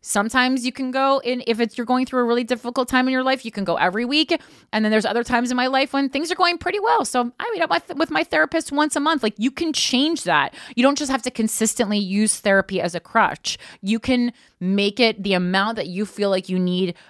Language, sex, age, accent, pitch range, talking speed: English, female, 30-49, American, 200-270 Hz, 260 wpm